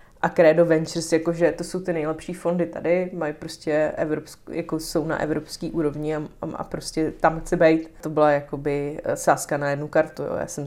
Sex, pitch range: female, 150-165 Hz